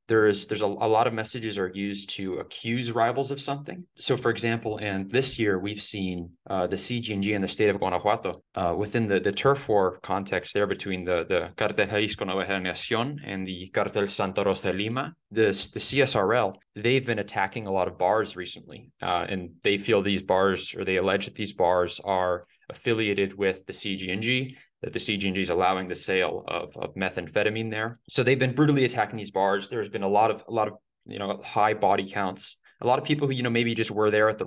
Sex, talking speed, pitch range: male, 215 wpm, 95-120 Hz